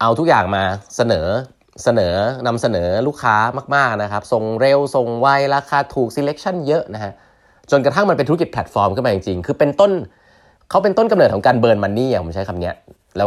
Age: 20-39